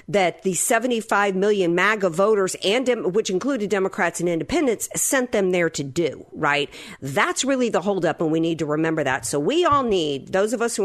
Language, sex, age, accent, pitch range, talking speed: English, female, 50-69, American, 155-195 Hz, 205 wpm